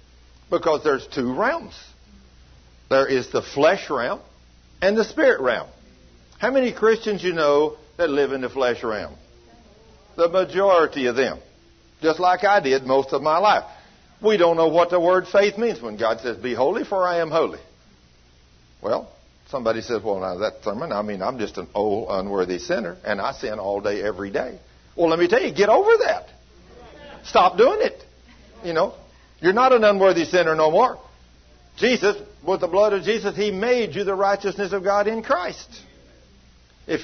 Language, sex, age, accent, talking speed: English, male, 60-79, American, 180 wpm